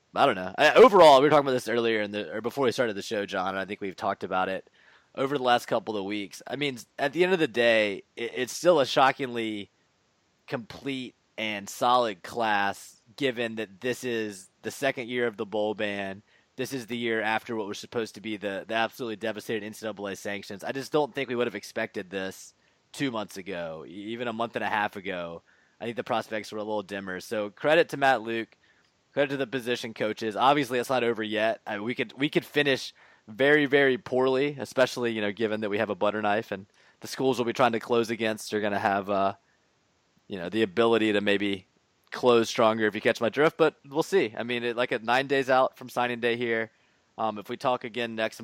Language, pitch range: English, 105-125 Hz